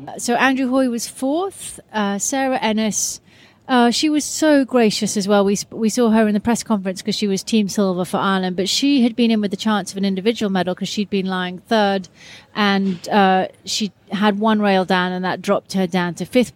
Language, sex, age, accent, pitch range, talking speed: English, female, 30-49, British, 190-235 Hz, 220 wpm